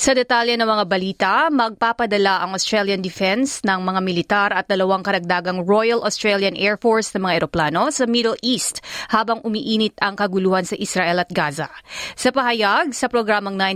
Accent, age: native, 30-49